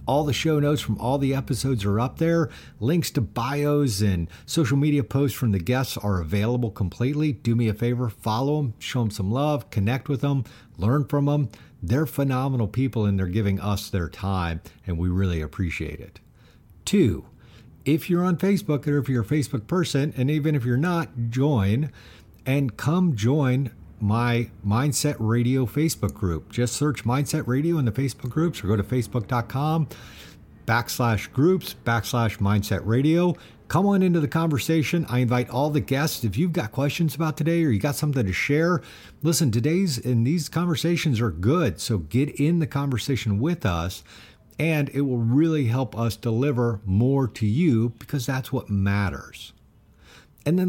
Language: English